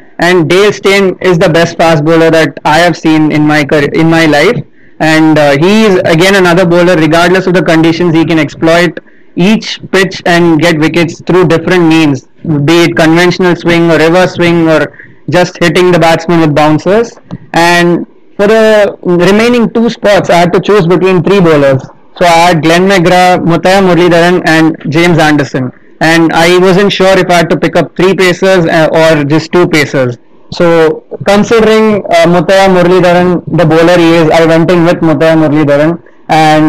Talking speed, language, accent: 185 wpm, English, Indian